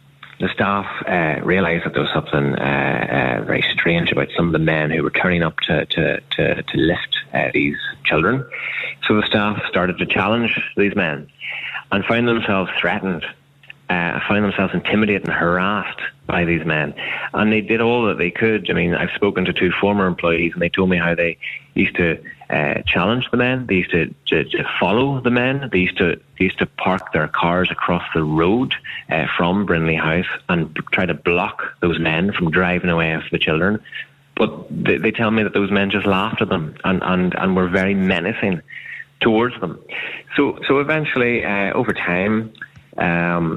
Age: 30-49